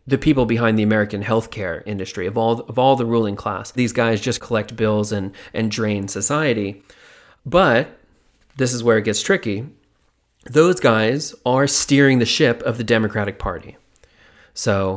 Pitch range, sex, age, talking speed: 105-130 Hz, male, 30-49, 165 wpm